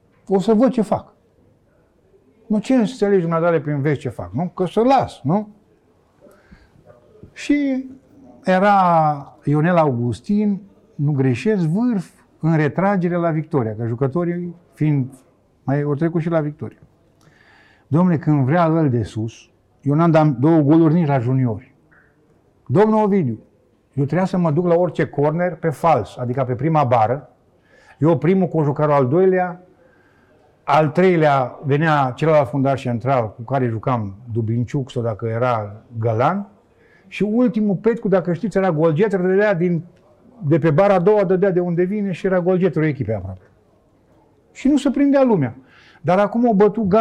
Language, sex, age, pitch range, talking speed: Romanian, male, 50-69, 130-190 Hz, 150 wpm